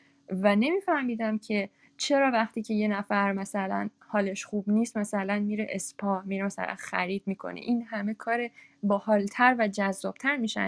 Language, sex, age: Persian, female, 20-39